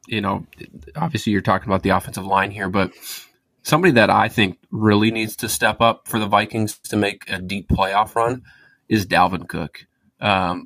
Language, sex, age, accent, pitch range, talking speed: English, male, 20-39, American, 100-125 Hz, 185 wpm